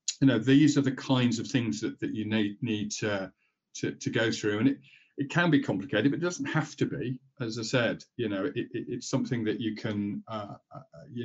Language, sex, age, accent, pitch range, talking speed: English, male, 40-59, British, 105-130 Hz, 235 wpm